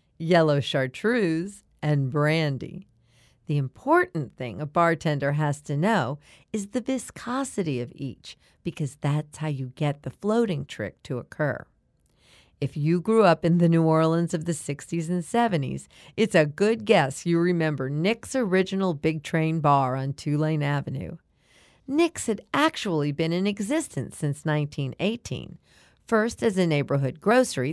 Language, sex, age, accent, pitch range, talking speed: English, female, 50-69, American, 145-195 Hz, 145 wpm